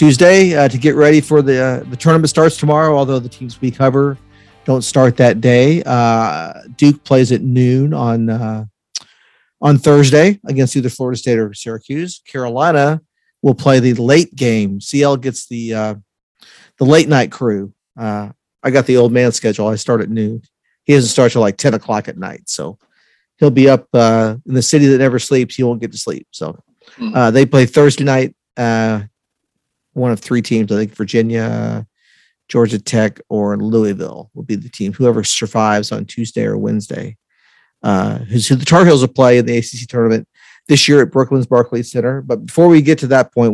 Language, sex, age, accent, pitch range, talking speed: English, male, 50-69, American, 115-140 Hz, 190 wpm